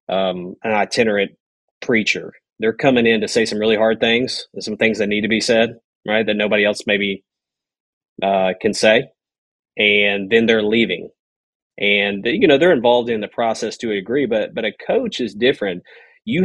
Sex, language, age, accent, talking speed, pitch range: male, English, 30-49, American, 180 wpm, 105-120 Hz